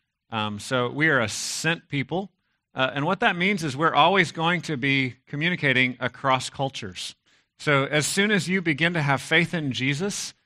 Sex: male